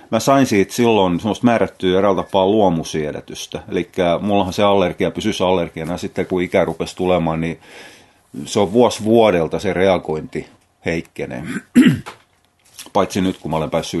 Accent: native